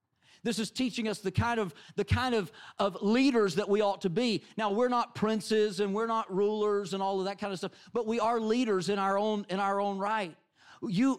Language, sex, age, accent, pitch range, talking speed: English, male, 40-59, American, 175-220 Hz, 210 wpm